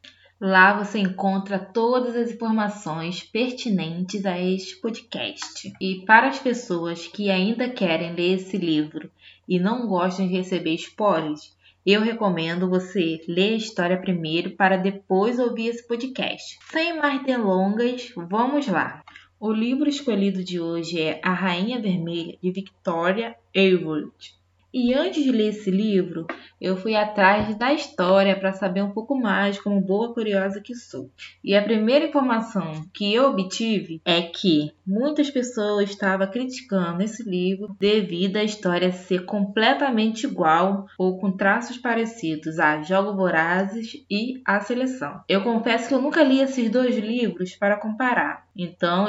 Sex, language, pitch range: female, Portuguese, 180-230 Hz